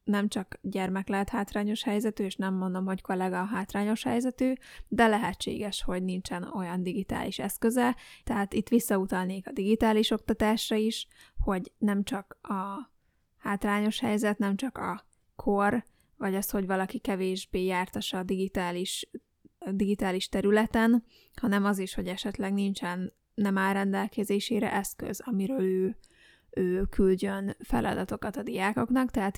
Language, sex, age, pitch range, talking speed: Hungarian, female, 20-39, 190-220 Hz, 135 wpm